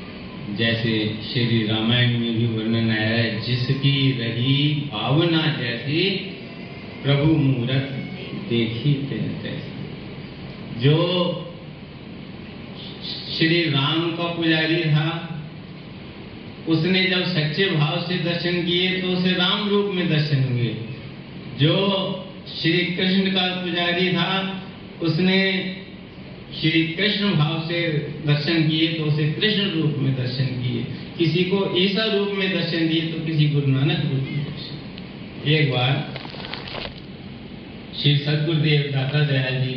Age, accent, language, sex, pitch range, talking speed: 50-69, native, Hindi, male, 140-180 Hz, 115 wpm